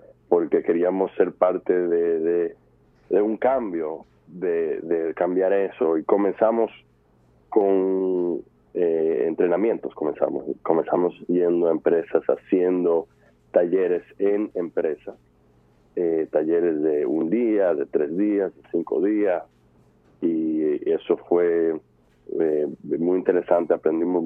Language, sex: Spanish, male